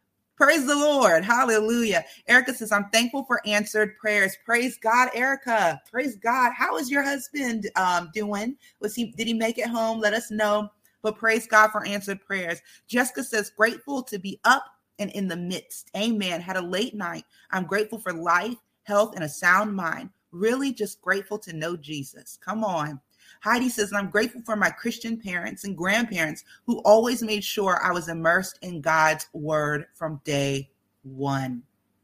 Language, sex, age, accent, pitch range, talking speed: English, female, 30-49, American, 155-220 Hz, 175 wpm